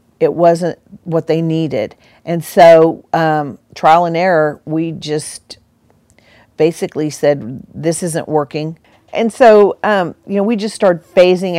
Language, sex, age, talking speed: English, female, 50-69, 140 wpm